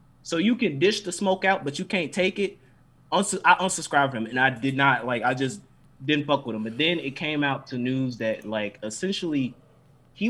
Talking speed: 220 wpm